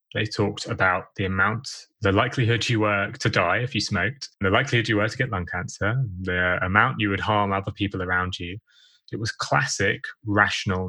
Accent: British